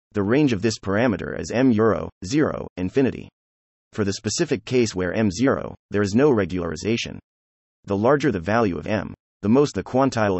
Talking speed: 180 wpm